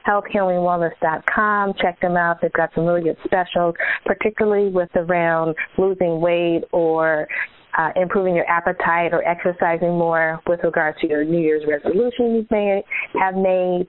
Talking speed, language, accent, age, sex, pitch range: 145 wpm, English, American, 30-49, female, 165-205 Hz